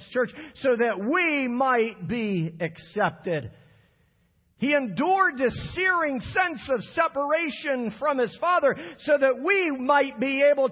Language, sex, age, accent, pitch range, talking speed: English, male, 50-69, American, 180-275 Hz, 130 wpm